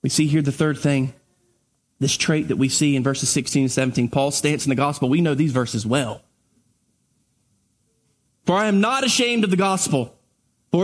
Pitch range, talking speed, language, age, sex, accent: 145-205 Hz, 195 wpm, English, 20-39, male, American